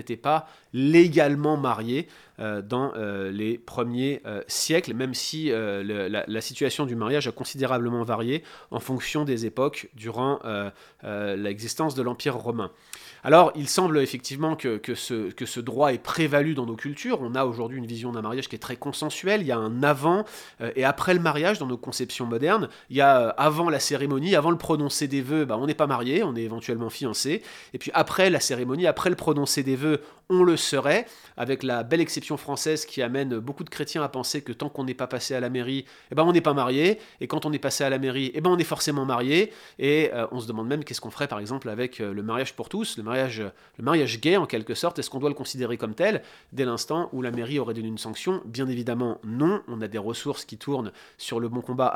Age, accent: 30-49, French